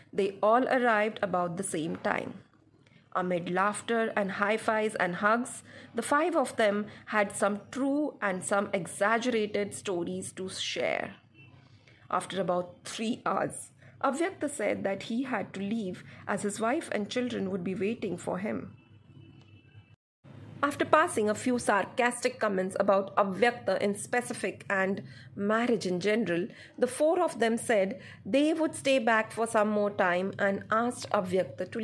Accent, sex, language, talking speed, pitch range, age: native, female, Marathi, 150 wpm, 180-230 Hz, 30-49